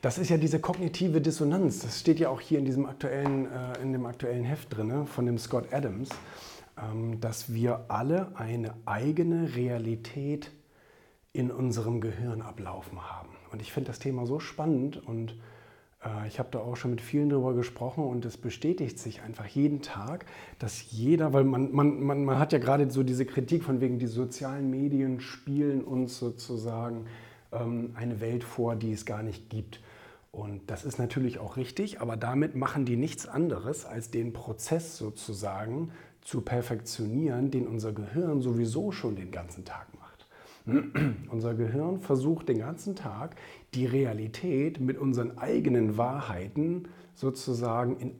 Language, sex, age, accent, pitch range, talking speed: German, male, 40-59, German, 115-145 Hz, 160 wpm